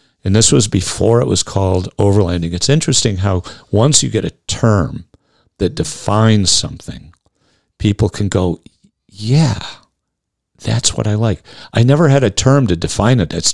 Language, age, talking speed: English, 50-69, 160 wpm